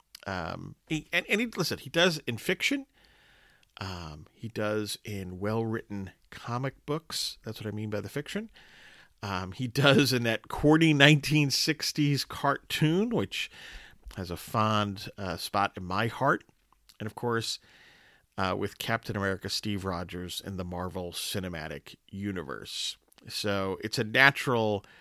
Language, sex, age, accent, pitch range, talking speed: English, male, 40-59, American, 100-140 Hz, 140 wpm